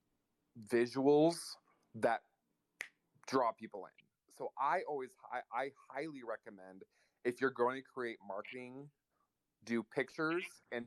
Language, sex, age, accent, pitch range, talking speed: English, male, 30-49, American, 105-130 Hz, 115 wpm